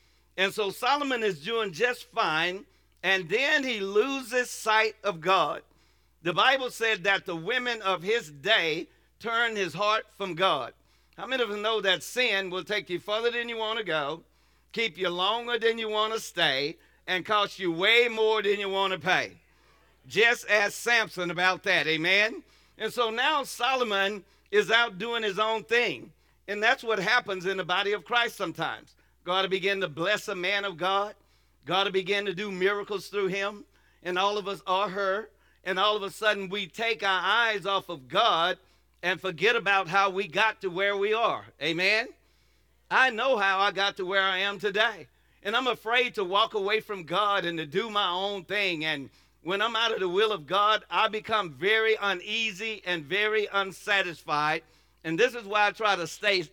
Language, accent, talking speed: English, American, 195 wpm